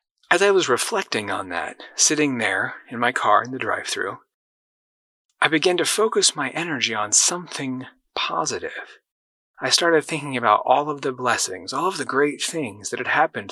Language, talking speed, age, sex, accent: English, 175 wpm, 30-49, male, American